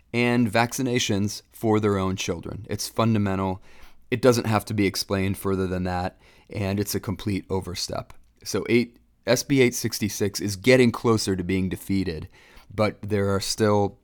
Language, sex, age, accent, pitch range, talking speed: English, male, 30-49, American, 95-115 Hz, 150 wpm